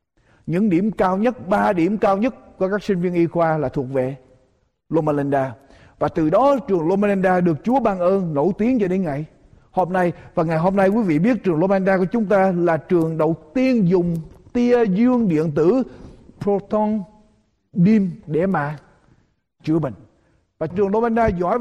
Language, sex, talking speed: Vietnamese, male, 190 wpm